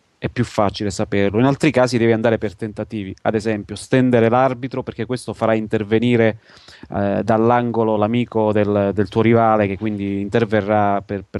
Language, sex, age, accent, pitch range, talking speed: Italian, male, 30-49, native, 105-120 Hz, 160 wpm